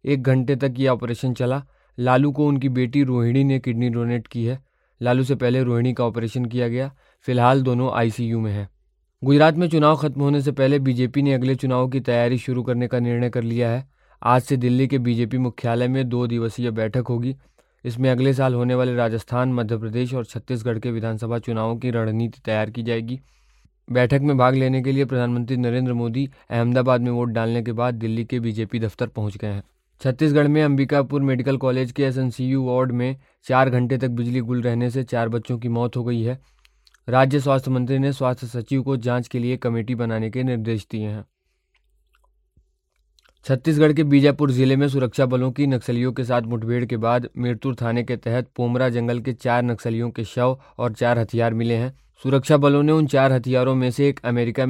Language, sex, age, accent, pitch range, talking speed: Hindi, male, 20-39, native, 120-135 Hz, 195 wpm